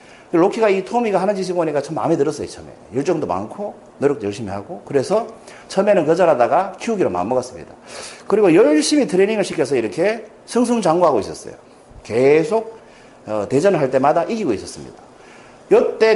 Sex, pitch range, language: male, 160-235 Hz, Korean